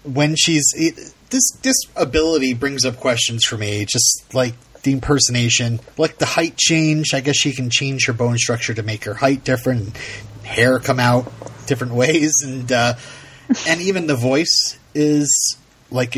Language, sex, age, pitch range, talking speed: English, male, 30-49, 120-155 Hz, 165 wpm